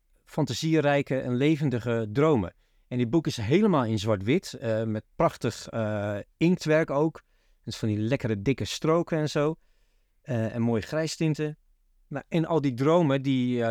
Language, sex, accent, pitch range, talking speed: Dutch, male, Dutch, 115-155 Hz, 160 wpm